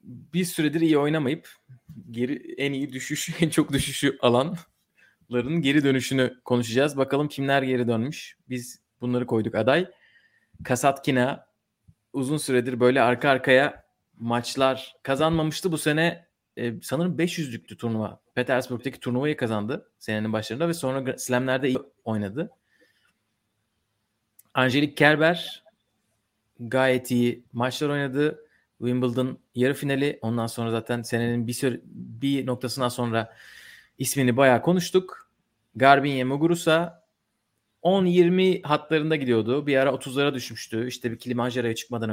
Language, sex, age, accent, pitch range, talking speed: Turkish, male, 30-49, native, 120-155 Hz, 115 wpm